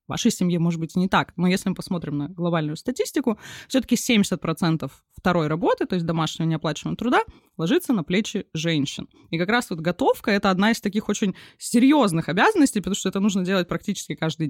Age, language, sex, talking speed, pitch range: 20-39, Russian, female, 190 wpm, 175-250 Hz